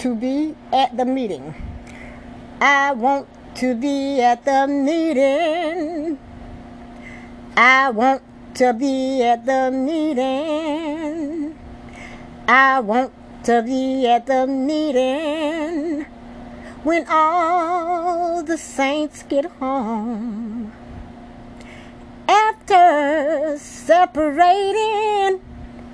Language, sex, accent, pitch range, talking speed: English, female, American, 245-310 Hz, 80 wpm